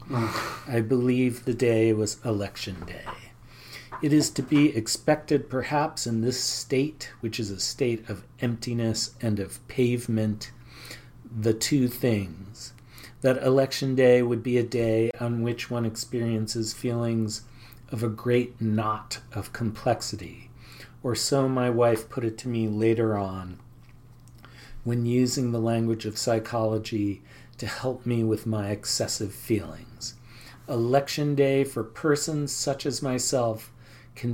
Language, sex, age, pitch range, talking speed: English, male, 40-59, 110-125 Hz, 135 wpm